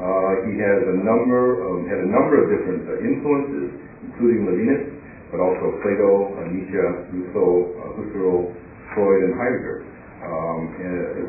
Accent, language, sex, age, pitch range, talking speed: American, English, male, 60-79, 90-110 Hz, 150 wpm